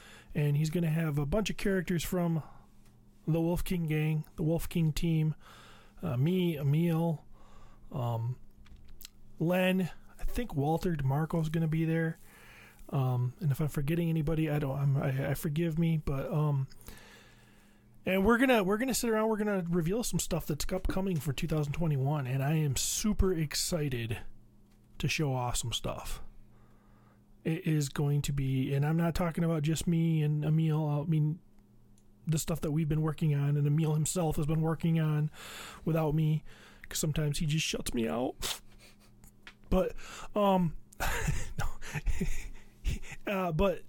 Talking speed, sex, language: 160 wpm, male, English